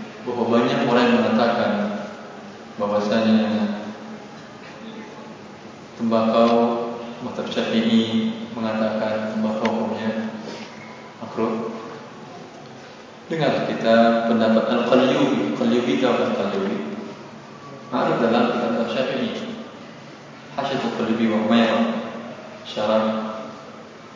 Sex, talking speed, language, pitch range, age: male, 70 wpm, Indonesian, 110-120 Hz, 20-39